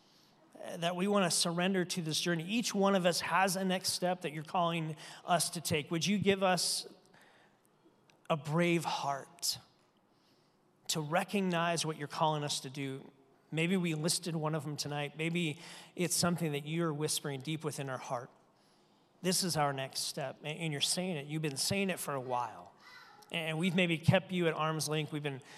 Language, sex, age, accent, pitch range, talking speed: English, male, 40-59, American, 145-180 Hz, 190 wpm